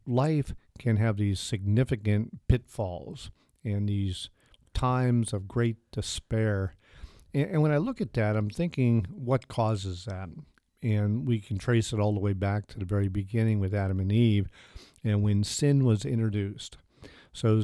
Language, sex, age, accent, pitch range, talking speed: English, male, 50-69, American, 100-125 Hz, 160 wpm